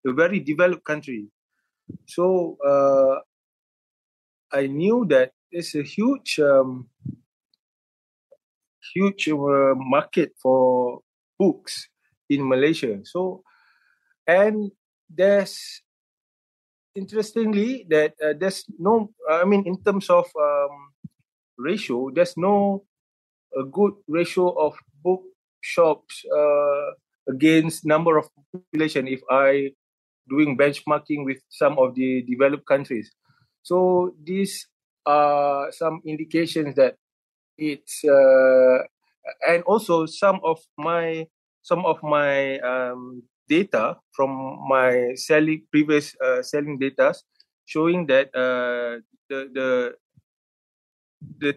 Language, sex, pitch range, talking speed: English, male, 130-180 Hz, 100 wpm